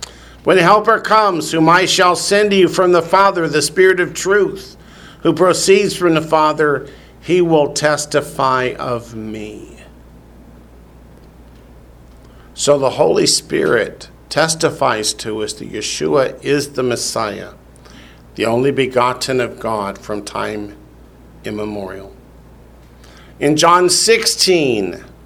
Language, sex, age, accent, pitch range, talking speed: English, male, 50-69, American, 115-190 Hz, 120 wpm